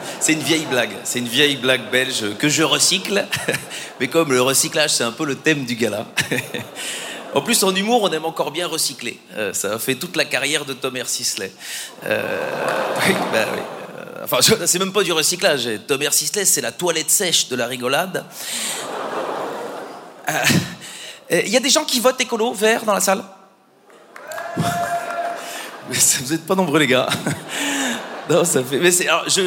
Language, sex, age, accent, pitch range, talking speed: French, male, 30-49, French, 145-195 Hz, 175 wpm